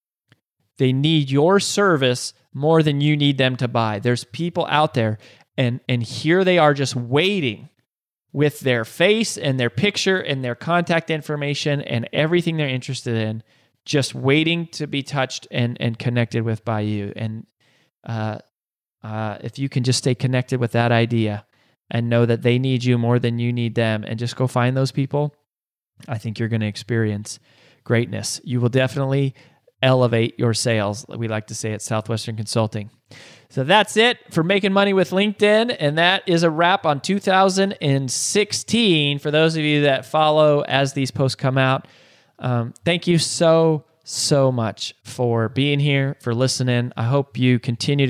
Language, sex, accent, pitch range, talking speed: English, male, American, 120-150 Hz, 170 wpm